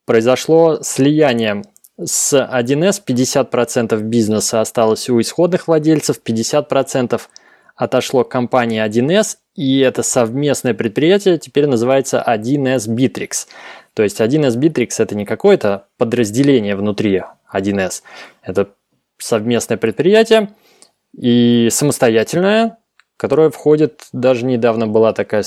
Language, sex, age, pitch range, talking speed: Russian, male, 20-39, 115-145 Hz, 105 wpm